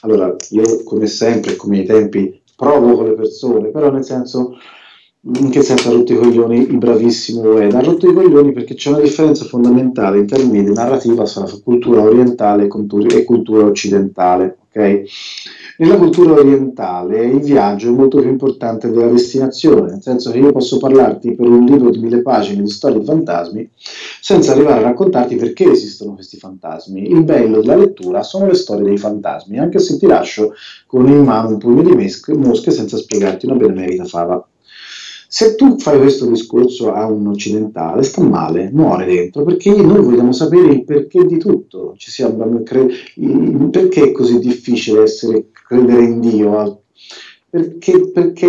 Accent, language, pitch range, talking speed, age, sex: native, Italian, 110-160 Hz, 170 wpm, 40-59, male